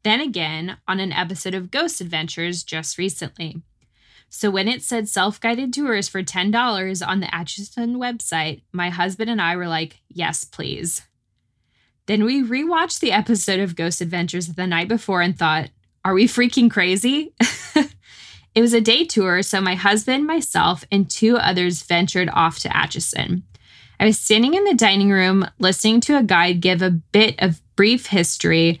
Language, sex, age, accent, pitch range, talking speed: English, female, 20-39, American, 165-215 Hz, 165 wpm